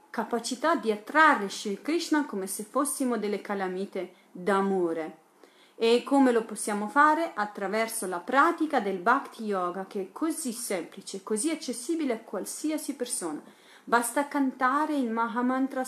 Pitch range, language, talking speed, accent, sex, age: 195-270 Hz, Italian, 130 wpm, native, female, 40-59